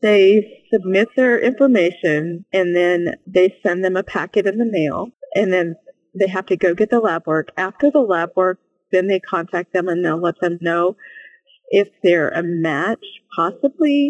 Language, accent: English, American